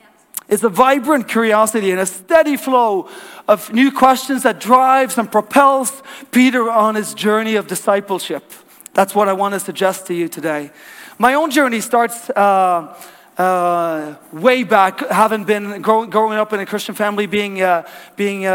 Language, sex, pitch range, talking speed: English, male, 190-250 Hz, 165 wpm